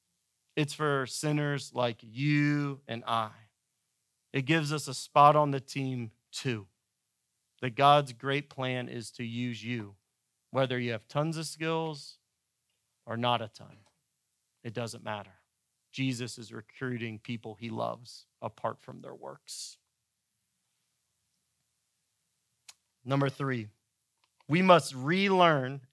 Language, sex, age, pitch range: English, male, 30-49, 115-150 Hz